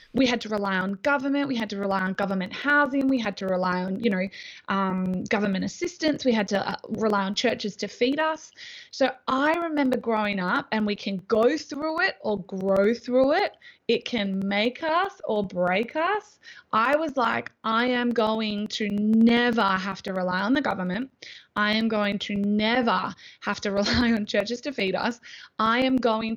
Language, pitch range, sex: English, 200-260 Hz, female